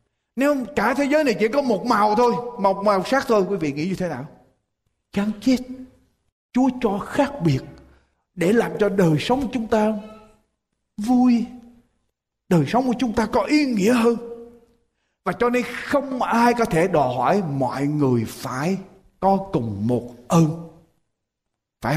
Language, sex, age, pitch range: Japanese, male, 20-39, 155-245 Hz